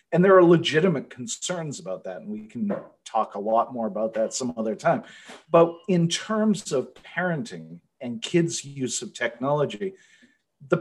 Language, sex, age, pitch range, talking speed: English, male, 40-59, 125-180 Hz, 165 wpm